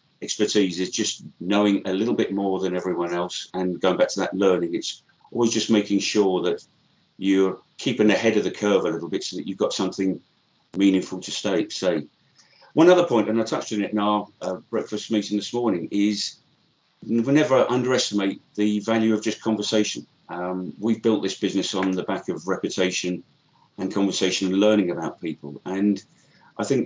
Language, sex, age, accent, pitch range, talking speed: English, male, 40-59, British, 95-110 Hz, 190 wpm